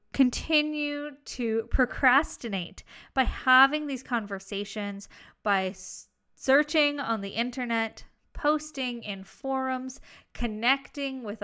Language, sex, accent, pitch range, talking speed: English, female, American, 220-285 Hz, 95 wpm